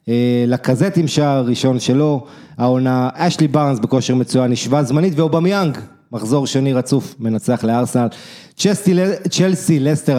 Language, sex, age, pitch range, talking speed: English, male, 30-49, 120-155 Hz, 120 wpm